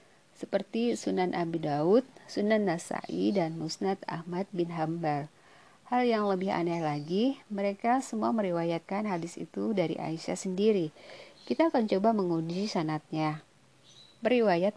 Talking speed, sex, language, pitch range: 120 wpm, female, Indonesian, 175-225 Hz